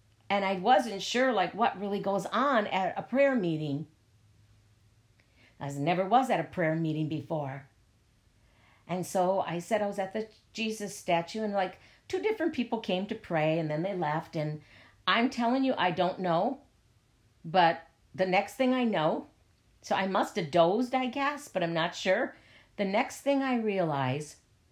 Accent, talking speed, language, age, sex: American, 170 wpm, English, 50-69, female